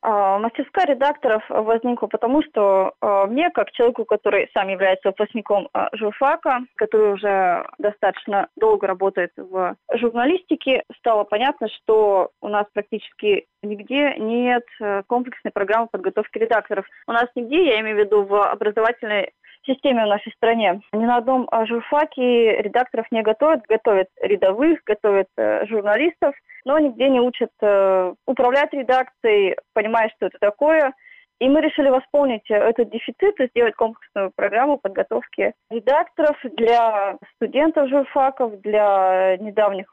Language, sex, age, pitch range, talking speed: Russian, female, 20-39, 205-260 Hz, 130 wpm